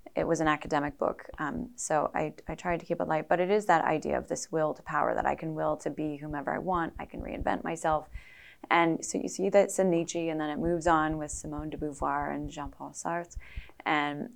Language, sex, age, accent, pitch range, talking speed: English, female, 20-39, American, 150-180 Hz, 245 wpm